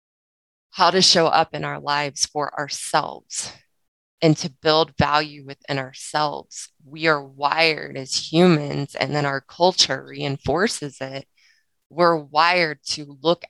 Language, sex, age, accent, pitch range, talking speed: English, female, 20-39, American, 135-160 Hz, 135 wpm